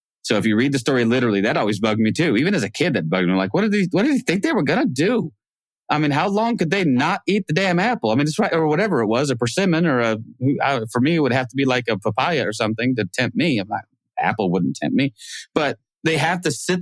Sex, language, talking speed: male, English, 280 wpm